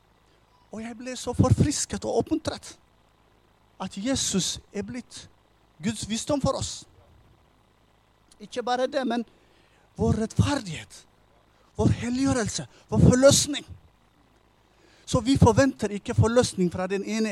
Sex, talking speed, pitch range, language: male, 120 wpm, 170-250 Hz, English